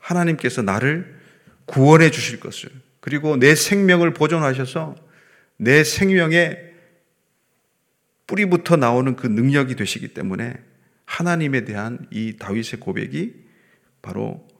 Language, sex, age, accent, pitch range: Korean, male, 30-49, native, 120-165 Hz